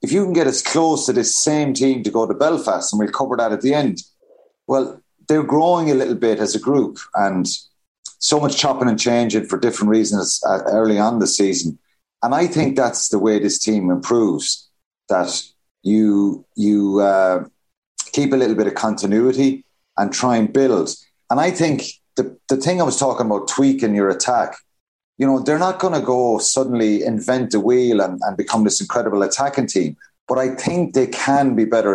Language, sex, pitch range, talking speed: English, male, 110-135 Hz, 195 wpm